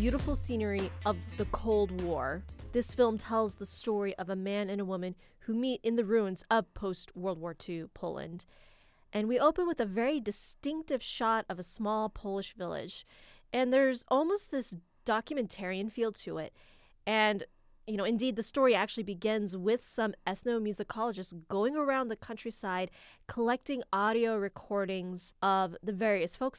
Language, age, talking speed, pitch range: English, 20-39, 160 wpm, 185-235 Hz